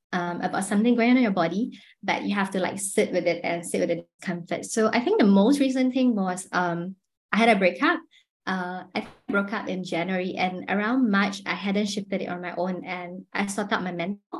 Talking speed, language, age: 235 wpm, English, 20-39